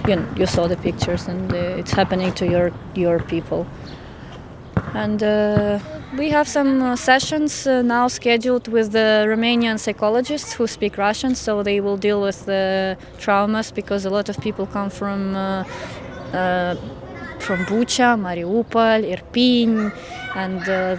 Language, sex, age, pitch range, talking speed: English, female, 20-39, 185-220 Hz, 150 wpm